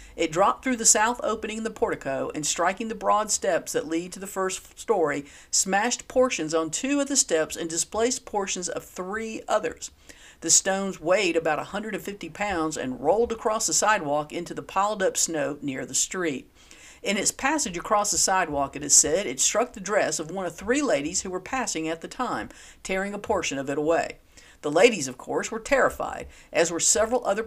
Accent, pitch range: American, 155-225 Hz